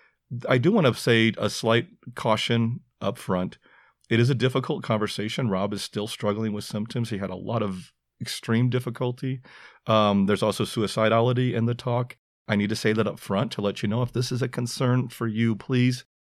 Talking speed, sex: 200 wpm, male